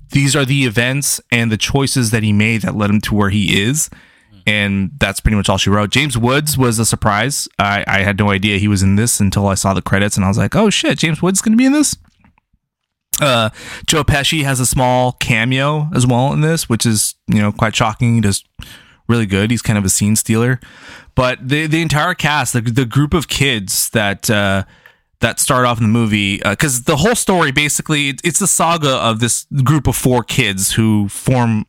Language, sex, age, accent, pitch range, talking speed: English, male, 20-39, American, 105-130 Hz, 225 wpm